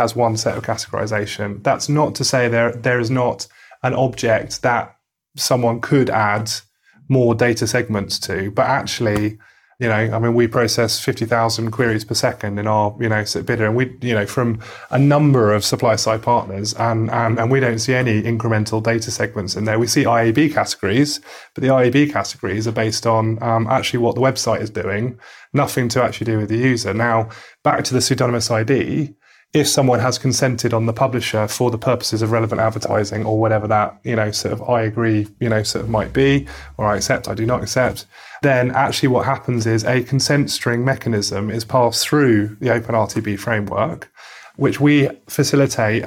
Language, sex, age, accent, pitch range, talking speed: English, male, 30-49, British, 110-125 Hz, 190 wpm